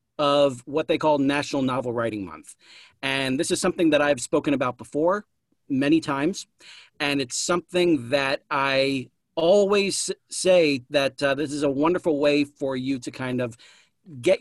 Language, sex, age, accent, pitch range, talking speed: English, male, 40-59, American, 130-165 Hz, 160 wpm